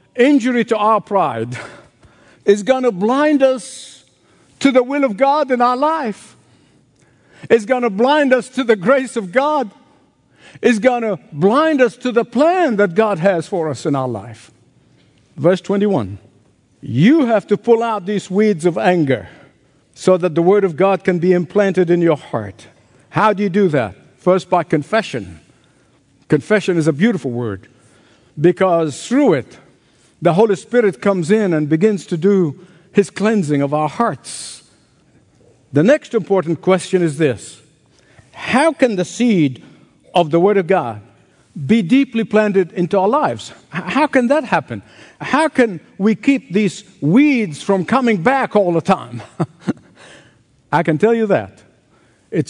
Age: 60-79